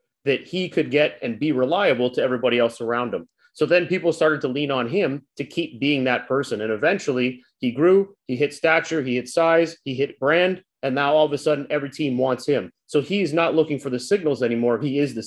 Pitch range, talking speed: 125-155 Hz, 230 wpm